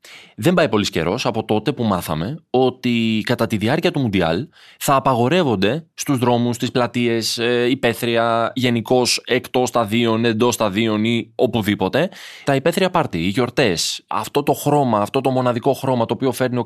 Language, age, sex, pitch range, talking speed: Greek, 20-39, male, 115-140 Hz, 165 wpm